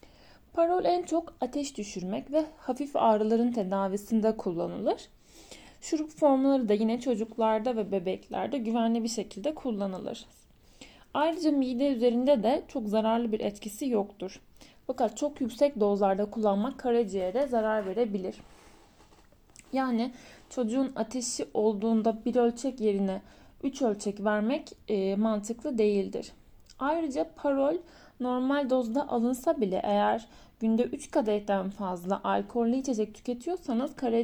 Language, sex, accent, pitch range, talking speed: Turkish, female, native, 210-265 Hz, 115 wpm